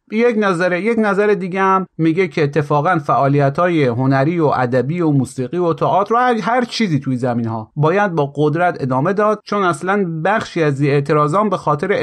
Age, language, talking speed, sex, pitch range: 30-49, Persian, 180 wpm, male, 135-180 Hz